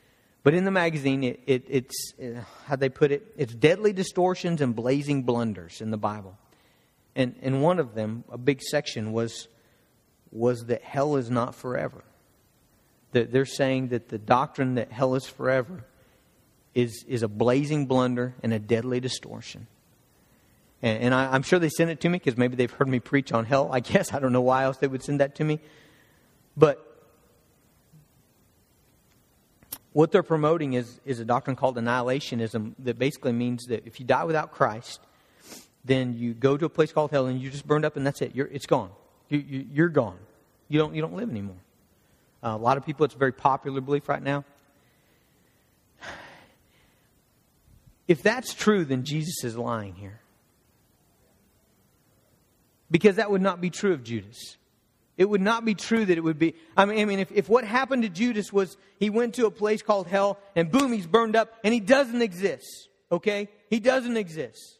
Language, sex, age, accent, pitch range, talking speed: English, male, 40-59, American, 120-170 Hz, 185 wpm